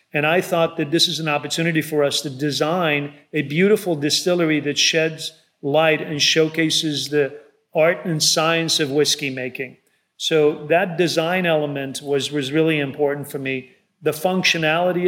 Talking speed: 155 wpm